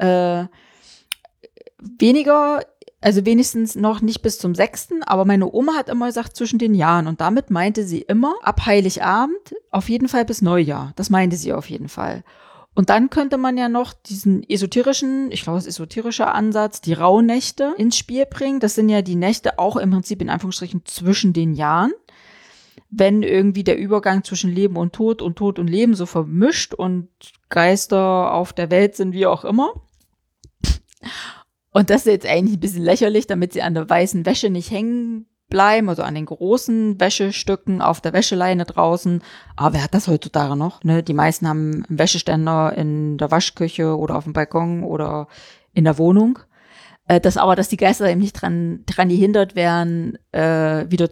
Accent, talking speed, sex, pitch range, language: German, 175 wpm, female, 170-220 Hz, German